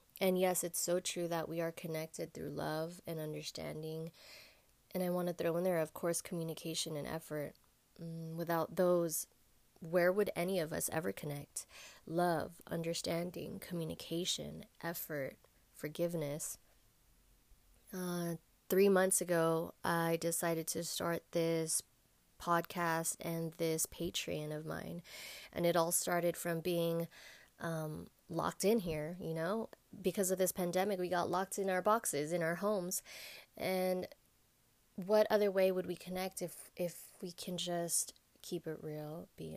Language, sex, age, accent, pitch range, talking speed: English, female, 20-39, American, 165-185 Hz, 145 wpm